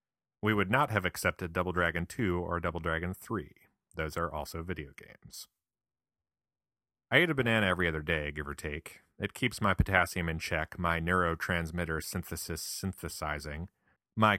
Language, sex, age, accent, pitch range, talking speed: English, male, 30-49, American, 80-105 Hz, 160 wpm